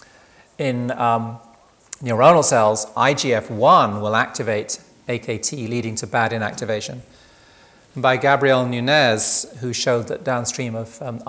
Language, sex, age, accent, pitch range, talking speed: Spanish, male, 40-59, British, 115-145 Hz, 115 wpm